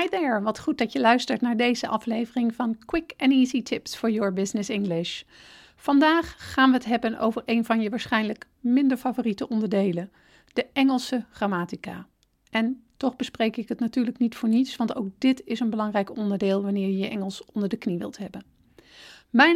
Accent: Dutch